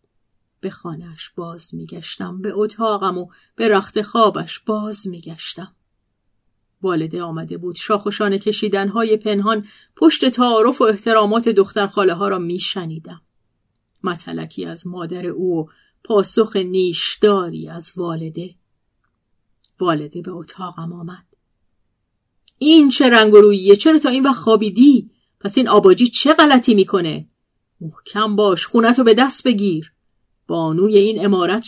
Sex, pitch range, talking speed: female, 160-220 Hz, 120 wpm